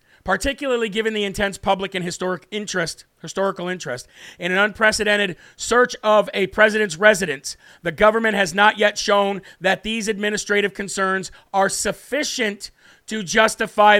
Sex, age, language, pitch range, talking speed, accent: male, 40-59, English, 195-230 Hz, 135 wpm, American